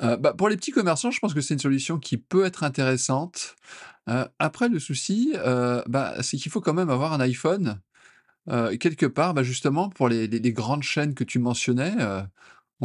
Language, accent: French, French